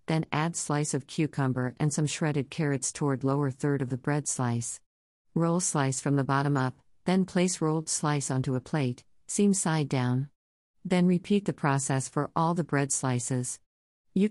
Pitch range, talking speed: 130-165 Hz, 175 wpm